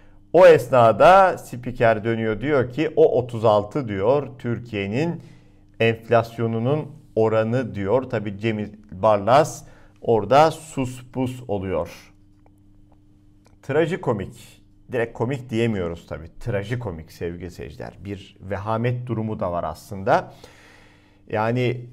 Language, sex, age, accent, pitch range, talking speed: Turkish, male, 50-69, native, 100-155 Hz, 95 wpm